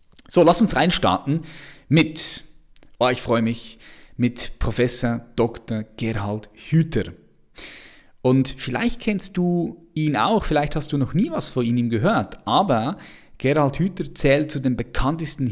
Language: German